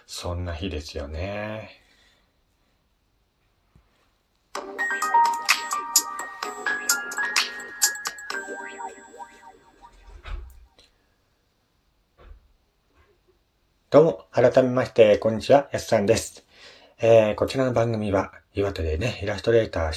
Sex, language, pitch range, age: male, Japanese, 85-120 Hz, 40-59